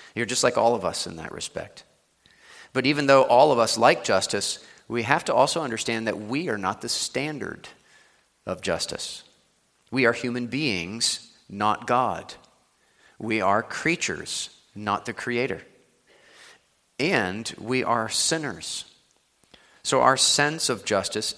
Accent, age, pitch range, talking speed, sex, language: American, 40-59, 110-140 Hz, 145 wpm, male, English